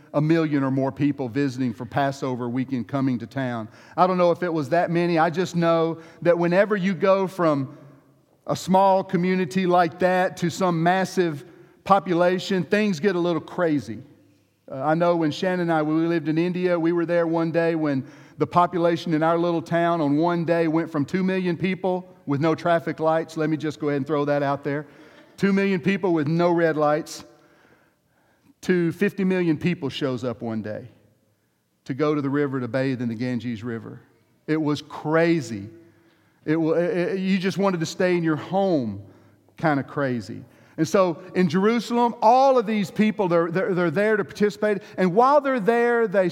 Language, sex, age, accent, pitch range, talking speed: English, male, 50-69, American, 145-185 Hz, 195 wpm